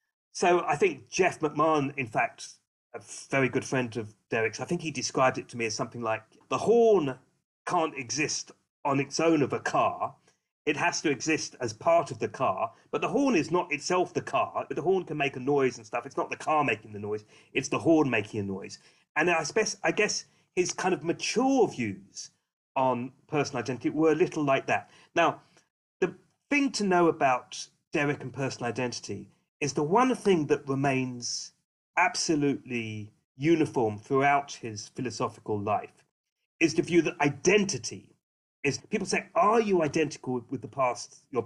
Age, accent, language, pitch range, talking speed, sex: 40-59, British, English, 125-170 Hz, 180 wpm, male